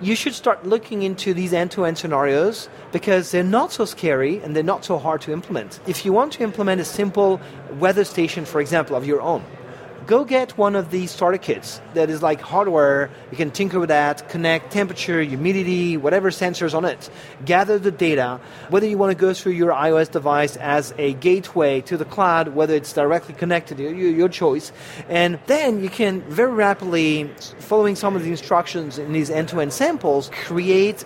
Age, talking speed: 30-49, 185 wpm